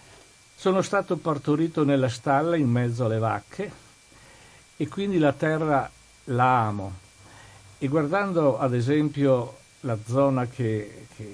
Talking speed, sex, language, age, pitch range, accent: 120 wpm, male, Italian, 50-69, 110-150 Hz, native